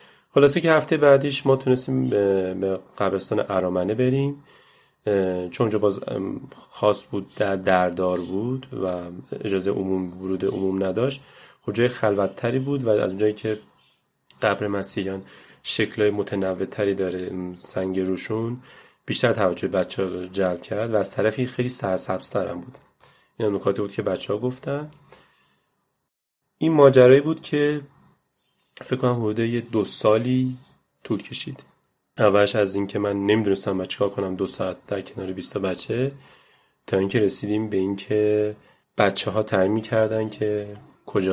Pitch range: 95-130 Hz